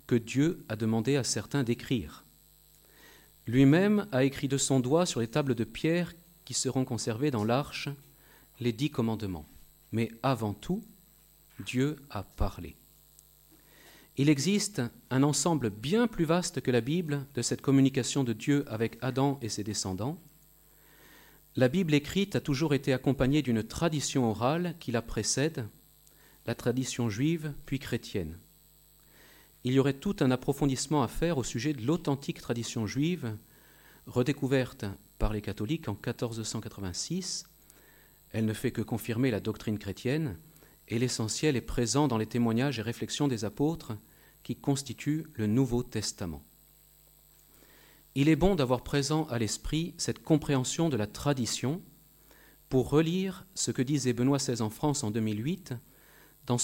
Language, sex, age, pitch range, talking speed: French, male, 40-59, 115-150 Hz, 145 wpm